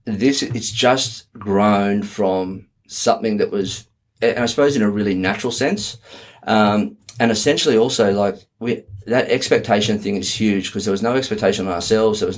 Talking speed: 175 wpm